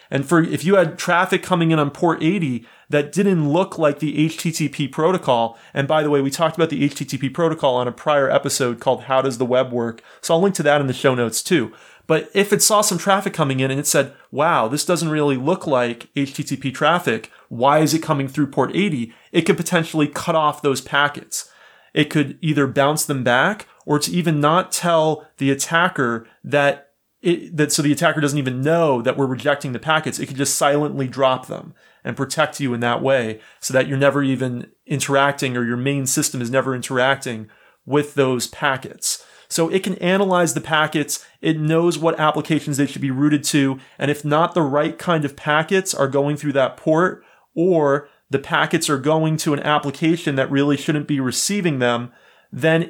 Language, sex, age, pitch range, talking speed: English, male, 30-49, 135-160 Hz, 200 wpm